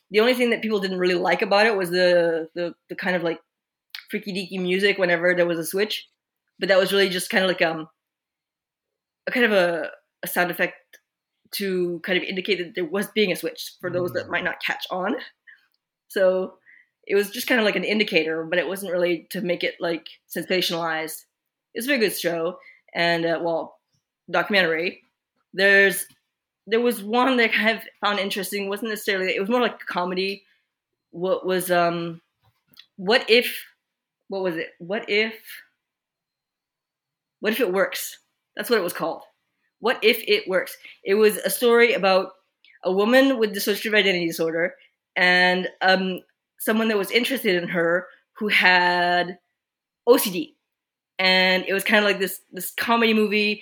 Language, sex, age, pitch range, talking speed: English, female, 20-39, 175-210 Hz, 180 wpm